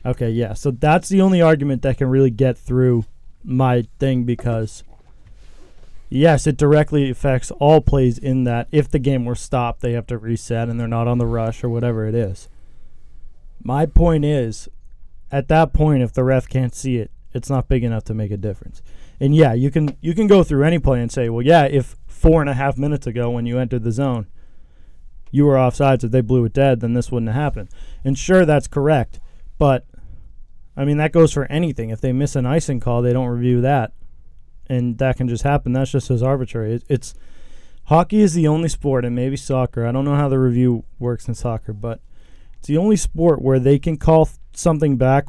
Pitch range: 115-140 Hz